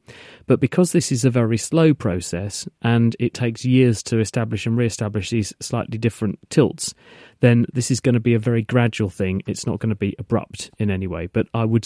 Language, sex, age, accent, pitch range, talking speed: English, male, 40-59, British, 105-125 Hz, 210 wpm